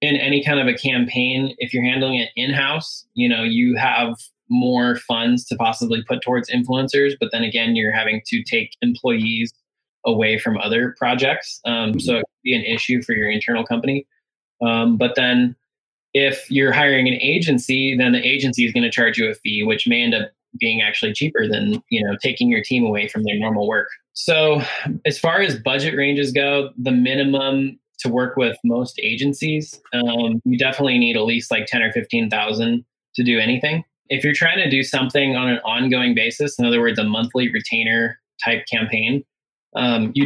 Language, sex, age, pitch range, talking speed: English, male, 20-39, 115-140 Hz, 190 wpm